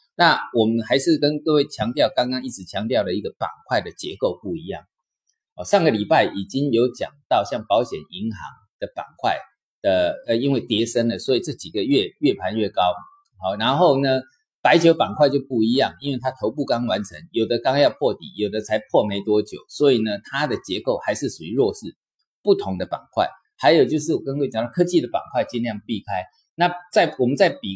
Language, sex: Chinese, male